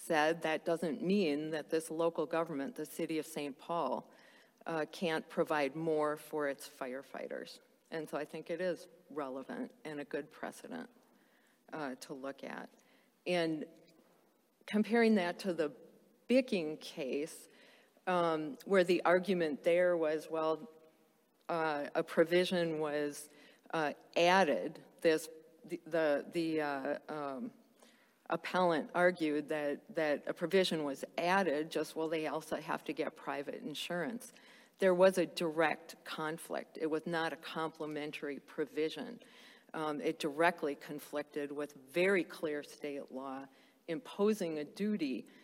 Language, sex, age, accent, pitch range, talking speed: English, female, 40-59, American, 150-175 Hz, 135 wpm